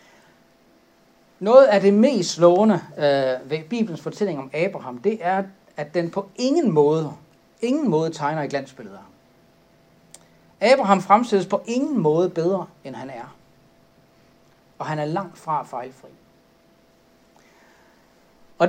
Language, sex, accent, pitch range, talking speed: Danish, male, native, 150-205 Hz, 125 wpm